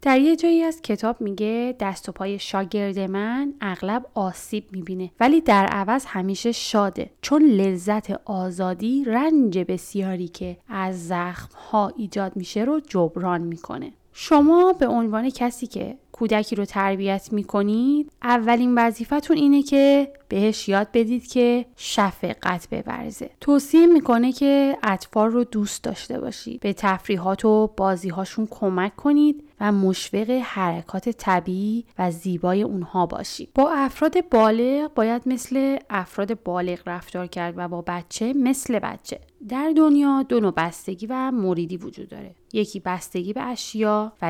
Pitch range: 185-250 Hz